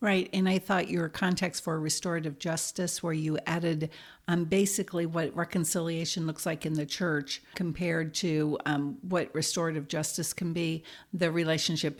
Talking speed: 155 wpm